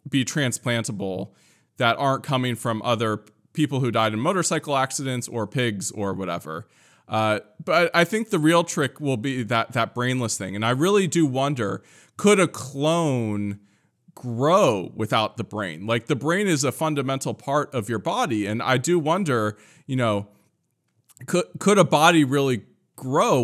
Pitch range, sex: 115-155 Hz, male